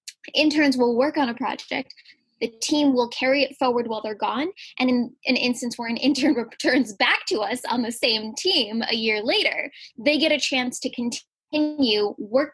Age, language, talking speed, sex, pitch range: 10-29, English, 190 wpm, female, 225-280 Hz